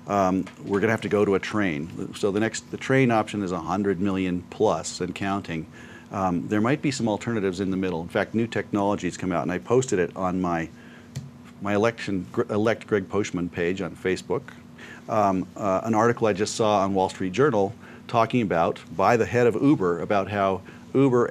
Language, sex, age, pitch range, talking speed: English, male, 40-59, 95-110 Hz, 205 wpm